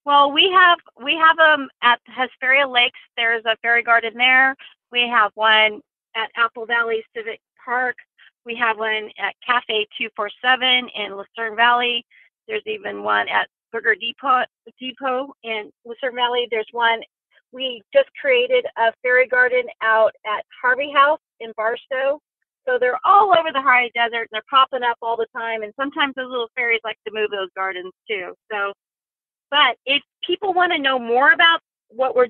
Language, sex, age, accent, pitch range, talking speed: English, female, 40-59, American, 225-270 Hz, 175 wpm